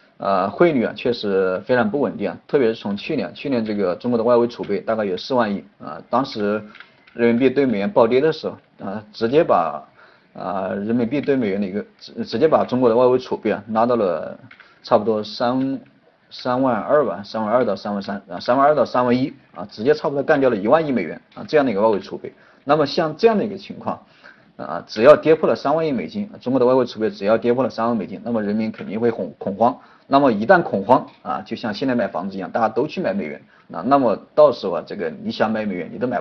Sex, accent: male, native